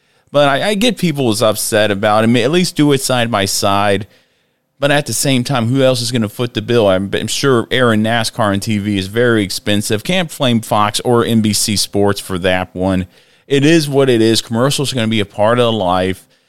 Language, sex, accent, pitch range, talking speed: English, male, American, 100-130 Hz, 235 wpm